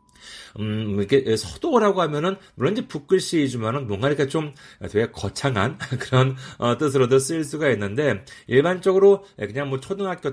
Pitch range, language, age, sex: 110-180 Hz, Korean, 40-59, male